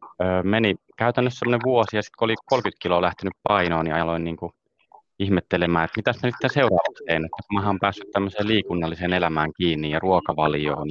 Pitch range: 85-100 Hz